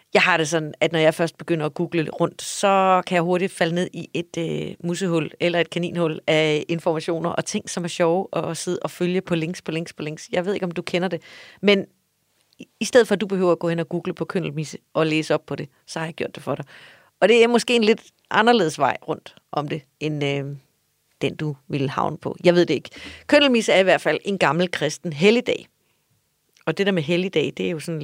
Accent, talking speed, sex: native, 250 wpm, female